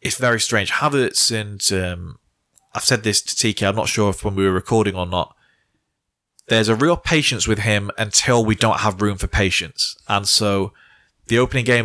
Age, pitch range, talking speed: 20-39, 100-115 Hz, 195 wpm